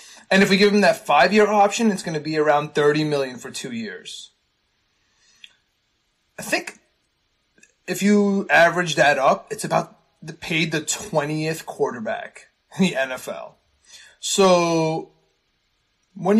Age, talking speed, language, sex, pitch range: 20-39, 135 wpm, English, male, 150-200 Hz